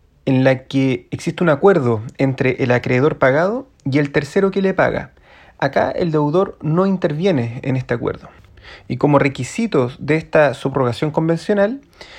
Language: Spanish